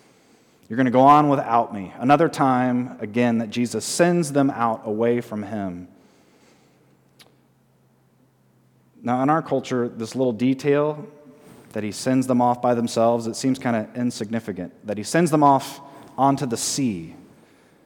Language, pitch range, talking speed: English, 115-145 Hz, 150 wpm